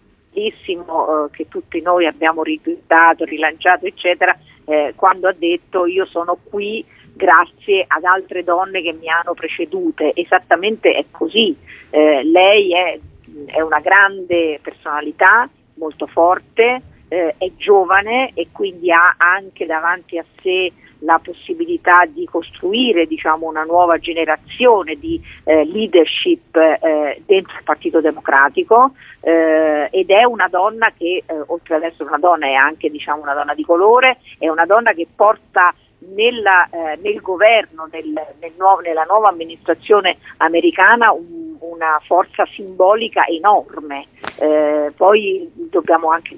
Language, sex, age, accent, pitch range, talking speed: Italian, female, 50-69, native, 160-200 Hz, 135 wpm